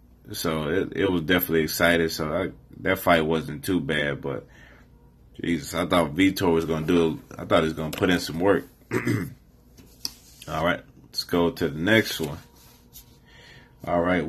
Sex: male